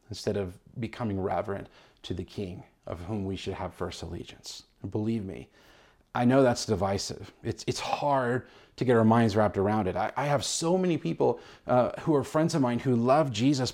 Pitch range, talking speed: 110-140 Hz, 200 wpm